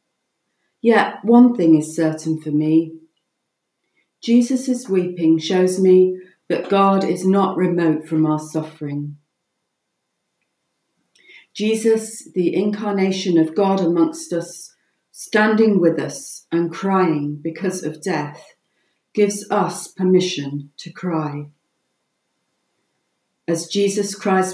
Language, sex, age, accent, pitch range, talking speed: English, female, 40-59, British, 160-200 Hz, 105 wpm